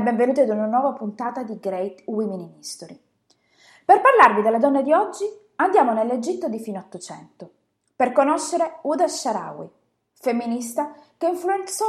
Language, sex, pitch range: Italian, female, 210-295 Hz